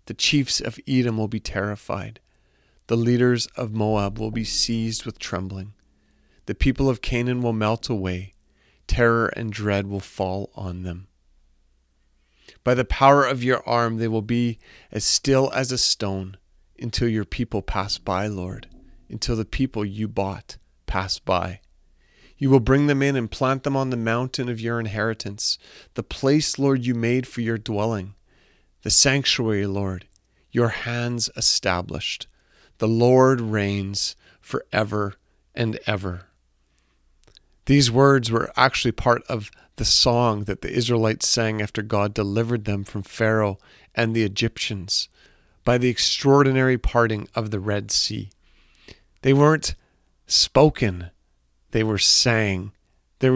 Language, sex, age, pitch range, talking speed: English, male, 40-59, 95-120 Hz, 145 wpm